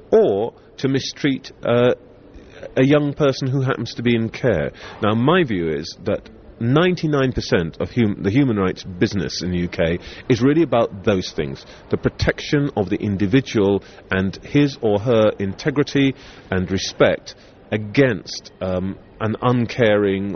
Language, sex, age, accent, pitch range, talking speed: English, male, 30-49, British, 95-125 Hz, 140 wpm